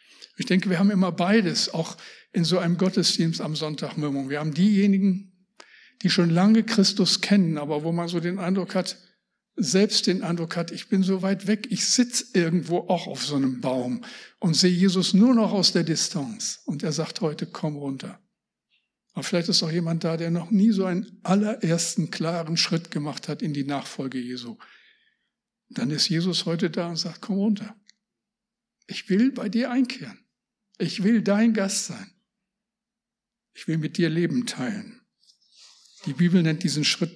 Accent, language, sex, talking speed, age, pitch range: German, German, male, 175 wpm, 60-79, 165-220 Hz